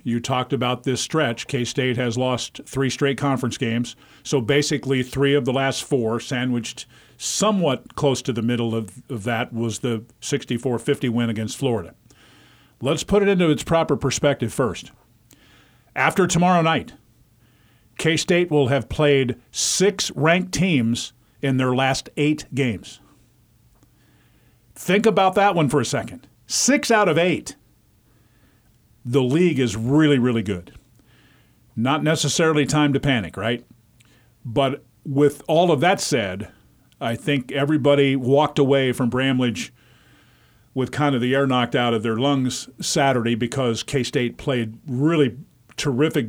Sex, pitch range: male, 120-145 Hz